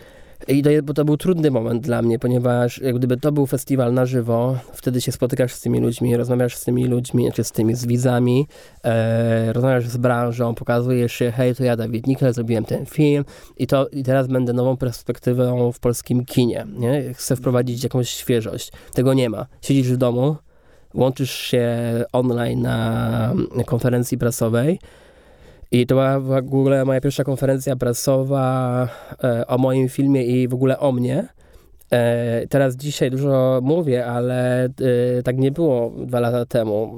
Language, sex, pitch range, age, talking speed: Polish, male, 125-135 Hz, 20-39, 165 wpm